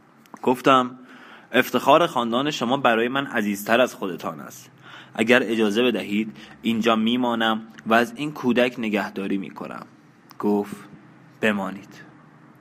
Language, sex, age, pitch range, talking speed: Persian, male, 20-39, 105-120 Hz, 110 wpm